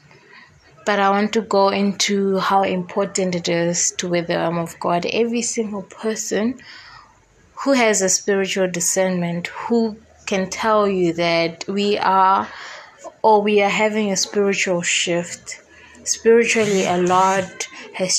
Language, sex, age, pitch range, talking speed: English, female, 20-39, 180-205 Hz, 140 wpm